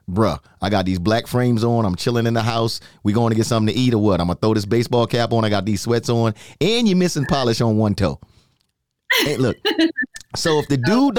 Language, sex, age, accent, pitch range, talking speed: English, male, 30-49, American, 105-135 Hz, 245 wpm